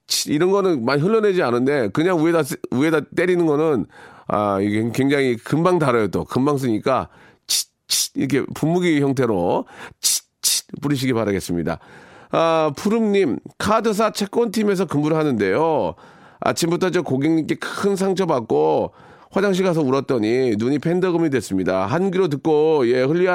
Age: 40-59